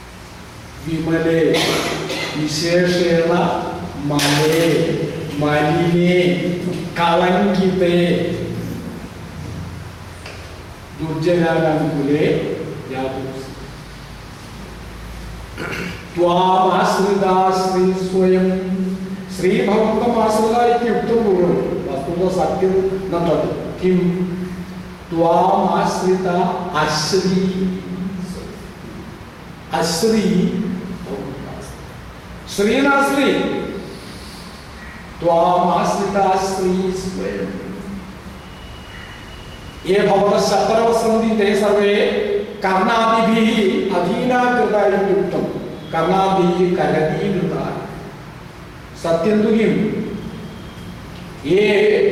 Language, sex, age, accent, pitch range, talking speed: Hindi, male, 60-79, native, 170-205 Hz, 35 wpm